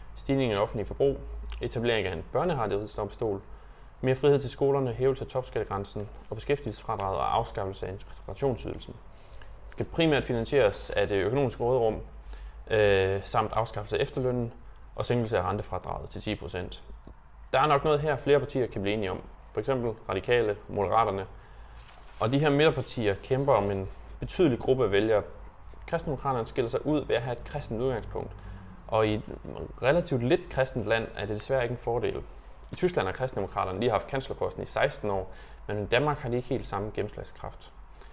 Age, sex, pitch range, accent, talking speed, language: 20-39, male, 95-130 Hz, native, 170 wpm, Danish